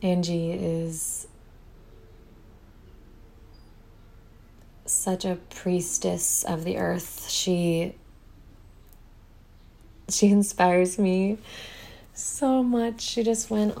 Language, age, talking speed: English, 20-39, 75 wpm